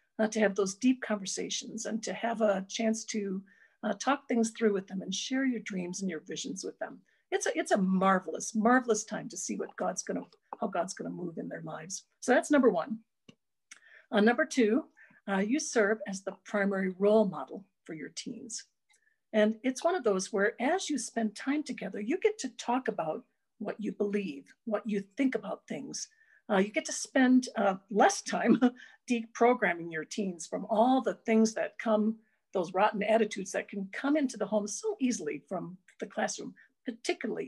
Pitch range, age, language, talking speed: 205-255 Hz, 50-69, English, 190 wpm